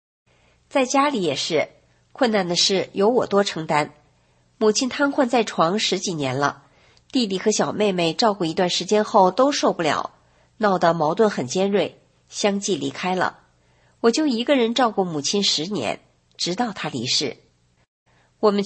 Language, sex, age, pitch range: Chinese, female, 50-69, 175-245 Hz